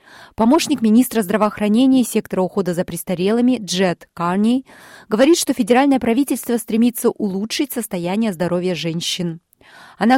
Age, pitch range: 30-49, 180-240 Hz